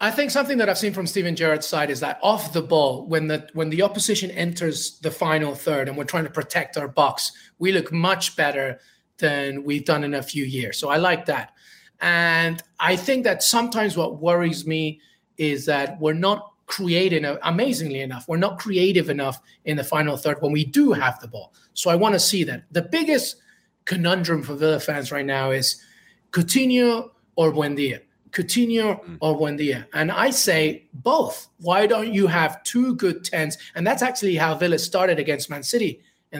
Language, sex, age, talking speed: English, male, 30-49, 195 wpm